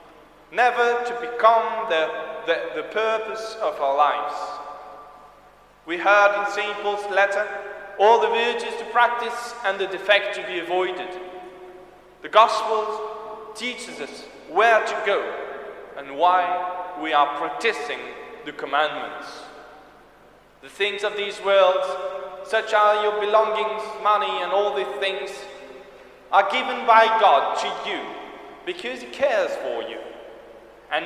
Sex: male